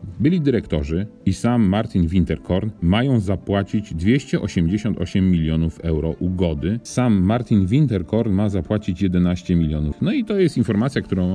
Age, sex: 40-59, male